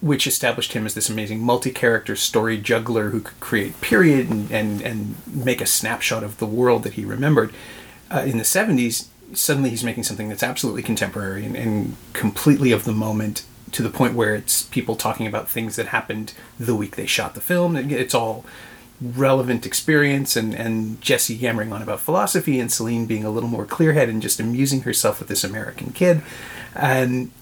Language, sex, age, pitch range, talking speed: English, male, 30-49, 115-130 Hz, 190 wpm